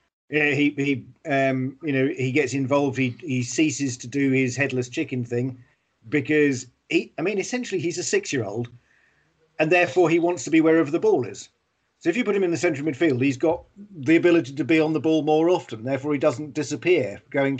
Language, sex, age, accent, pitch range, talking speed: English, male, 40-59, British, 125-155 Hz, 210 wpm